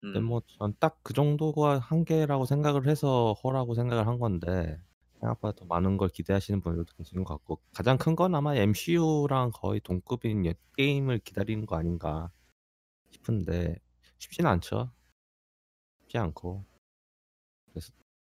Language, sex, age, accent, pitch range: Korean, male, 20-39, native, 85-120 Hz